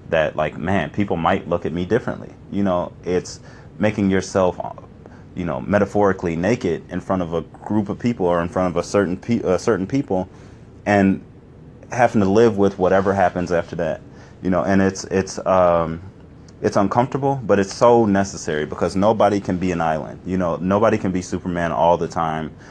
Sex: male